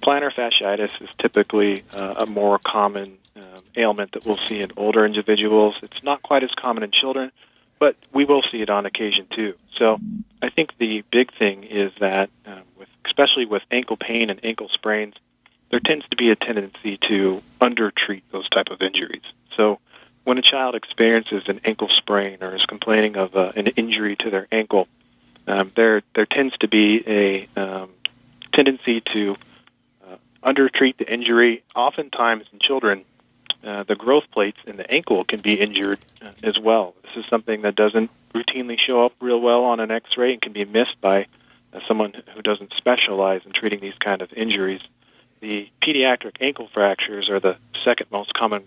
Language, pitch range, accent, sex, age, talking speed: English, 100-115 Hz, American, male, 40-59, 175 wpm